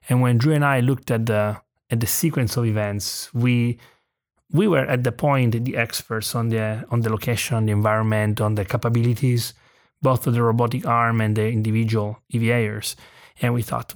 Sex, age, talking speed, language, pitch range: male, 30-49, 190 wpm, English, 115-130 Hz